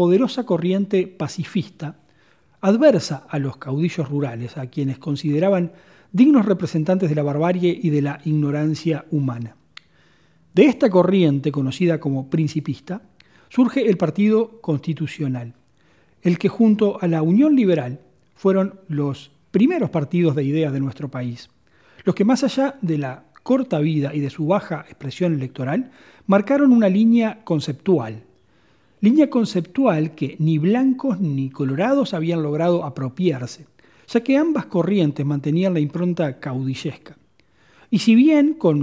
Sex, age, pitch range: male, 40-59, 145-200 Hz